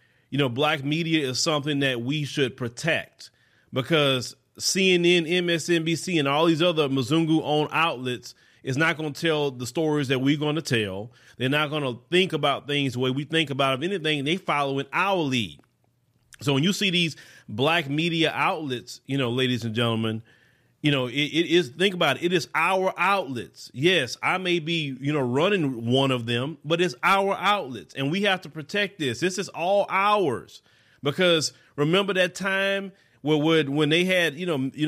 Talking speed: 190 wpm